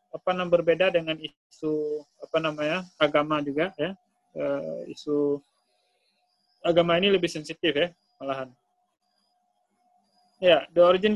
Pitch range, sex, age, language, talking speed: 155-195 Hz, male, 20-39, Indonesian, 115 wpm